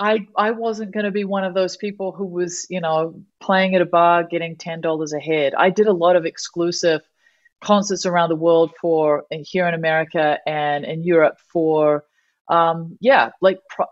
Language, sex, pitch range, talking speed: English, female, 160-200 Hz, 185 wpm